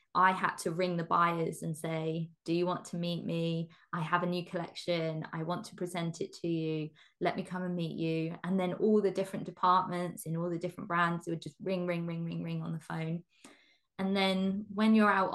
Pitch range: 165-190 Hz